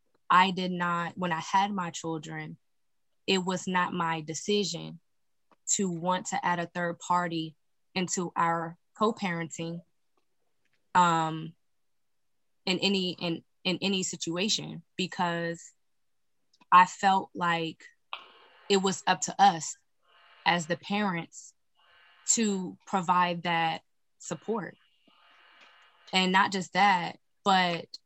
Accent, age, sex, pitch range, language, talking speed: American, 20-39, female, 170-190 Hz, English, 110 wpm